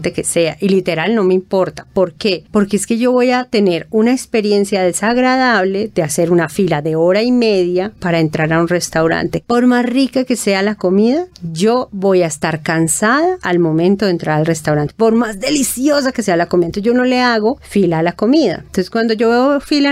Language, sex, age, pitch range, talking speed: Spanish, female, 40-59, 175-230 Hz, 210 wpm